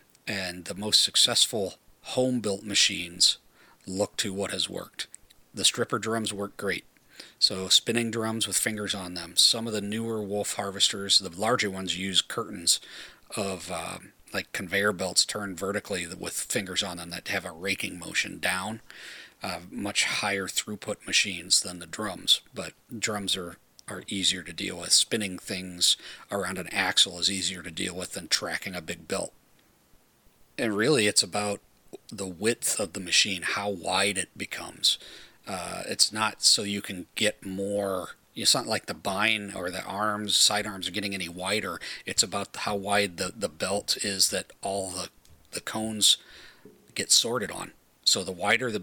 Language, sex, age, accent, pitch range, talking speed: English, male, 40-59, American, 90-105 Hz, 170 wpm